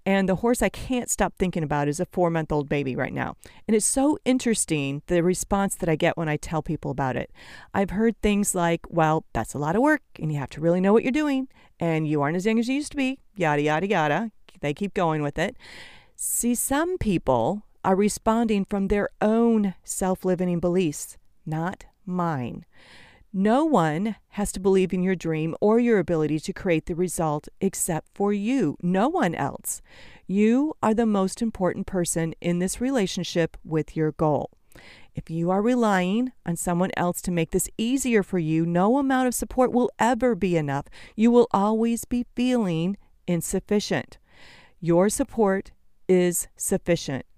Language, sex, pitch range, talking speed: English, female, 165-225 Hz, 180 wpm